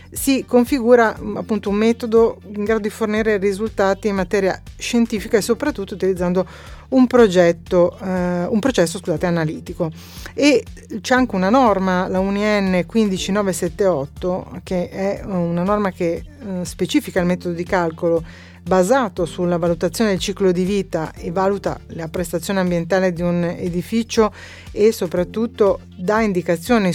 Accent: native